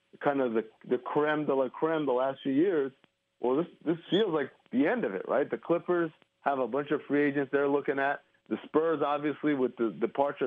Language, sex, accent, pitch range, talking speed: English, male, American, 125-155 Hz, 225 wpm